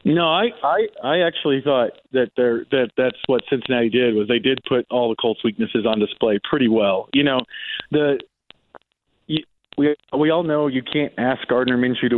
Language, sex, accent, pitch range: English, male, American, 125-145 Hz